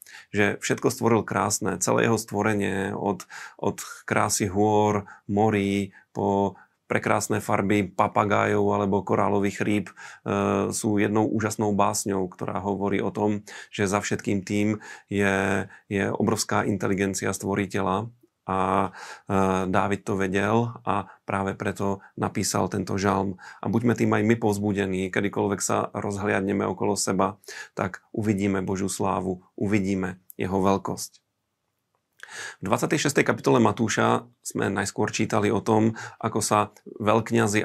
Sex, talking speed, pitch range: male, 125 wpm, 100-105 Hz